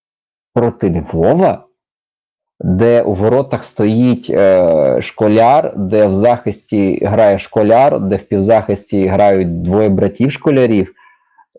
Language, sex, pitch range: Ukrainian, male, 100-125 Hz